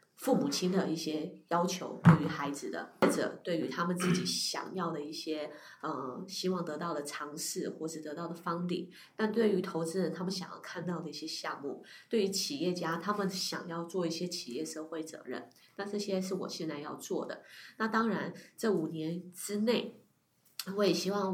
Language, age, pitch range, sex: Chinese, 20-39, 160-195 Hz, female